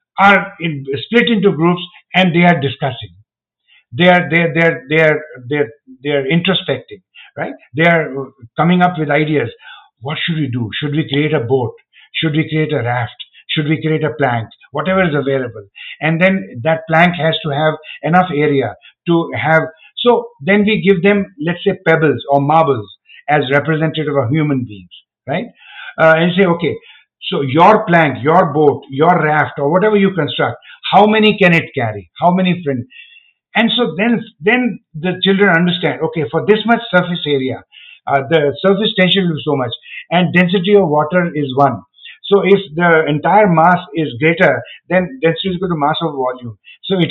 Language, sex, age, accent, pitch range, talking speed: English, male, 50-69, Indian, 145-195 Hz, 175 wpm